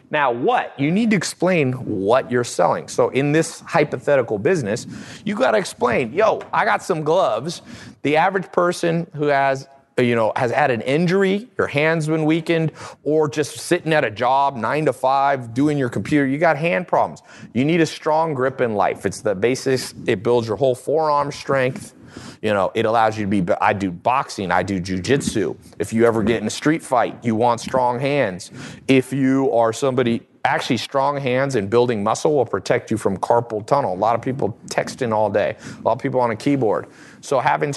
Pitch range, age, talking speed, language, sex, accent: 120-150 Hz, 30-49, 200 wpm, English, male, American